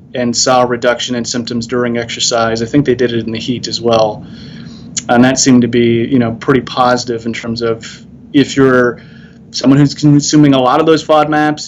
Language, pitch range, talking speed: English, 120-140 Hz, 205 wpm